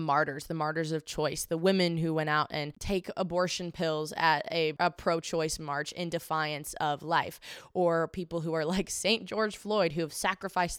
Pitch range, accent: 160-190 Hz, American